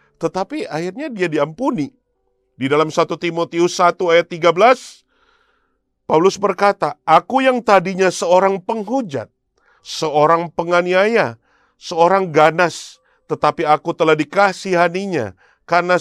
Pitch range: 150-210 Hz